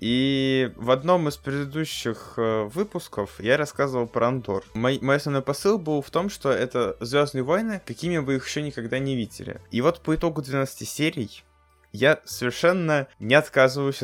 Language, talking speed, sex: Russian, 160 wpm, male